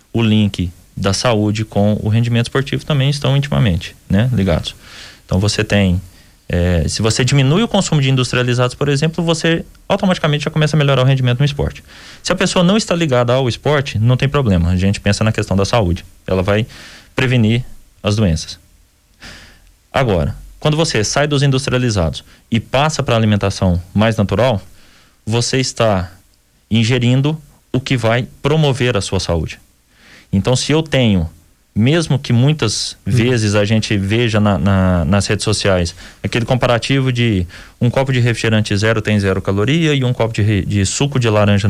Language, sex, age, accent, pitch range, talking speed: Portuguese, male, 20-39, Brazilian, 95-130 Hz, 165 wpm